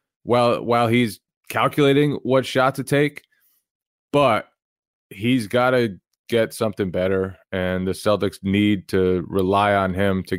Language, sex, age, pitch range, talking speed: English, male, 20-39, 95-120 Hz, 140 wpm